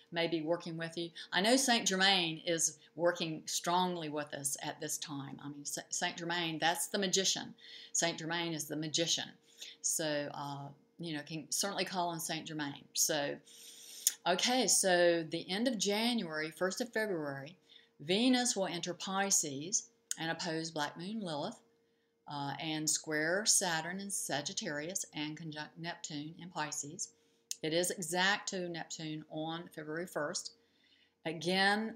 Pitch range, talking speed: 155-195 Hz, 145 wpm